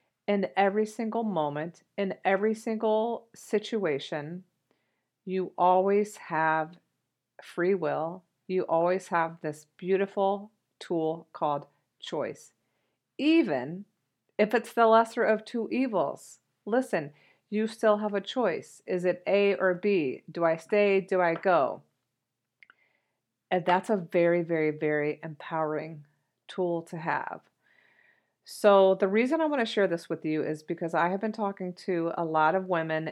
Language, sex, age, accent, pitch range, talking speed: English, female, 40-59, American, 155-200 Hz, 140 wpm